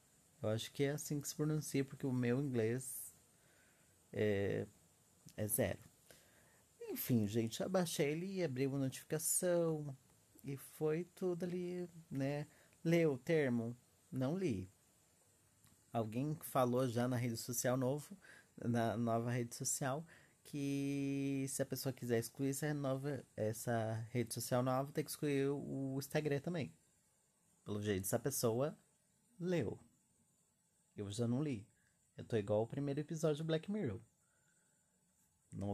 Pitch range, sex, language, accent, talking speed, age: 120-150 Hz, male, Portuguese, Brazilian, 135 wpm, 30-49